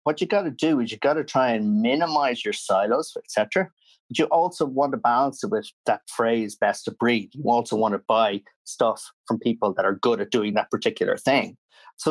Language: English